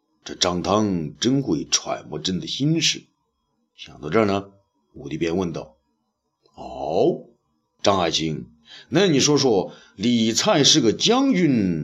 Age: 50-69